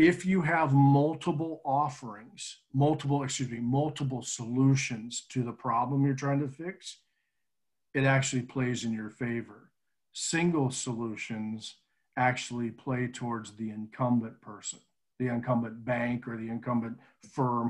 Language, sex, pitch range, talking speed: English, male, 115-135 Hz, 130 wpm